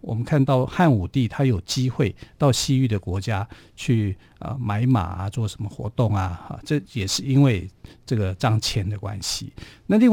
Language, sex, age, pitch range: Chinese, male, 50-69, 105-140 Hz